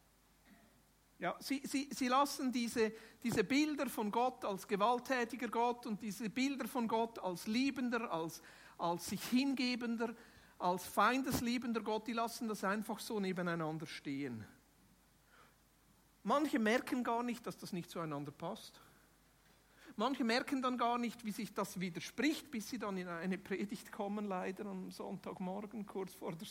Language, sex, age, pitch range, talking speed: German, male, 60-79, 195-255 Hz, 145 wpm